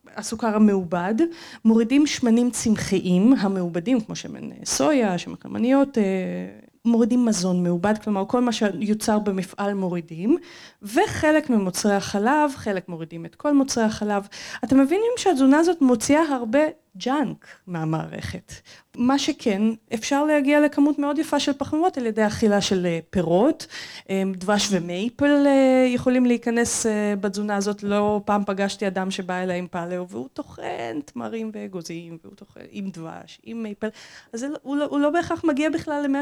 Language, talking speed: Hebrew, 140 wpm